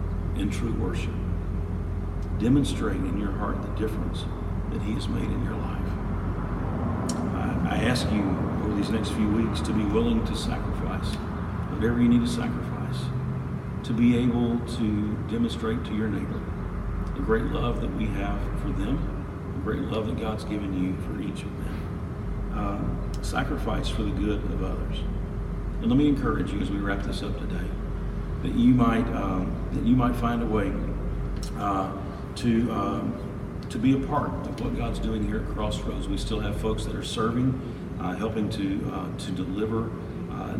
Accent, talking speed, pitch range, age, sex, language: American, 175 wpm, 95-115 Hz, 50-69, male, English